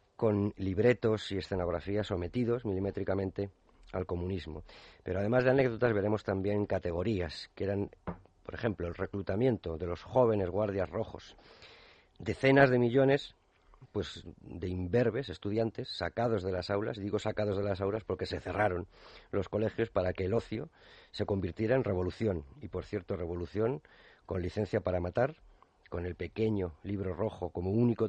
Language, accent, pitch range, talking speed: Spanish, Spanish, 90-110 Hz, 150 wpm